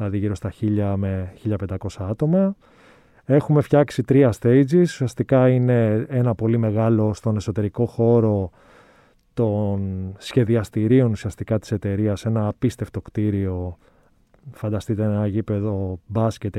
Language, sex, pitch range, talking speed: Greek, male, 105-135 Hz, 110 wpm